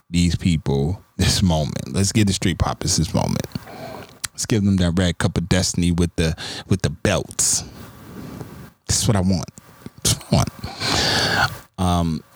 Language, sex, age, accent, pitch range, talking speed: English, male, 20-39, American, 85-105 Hz, 150 wpm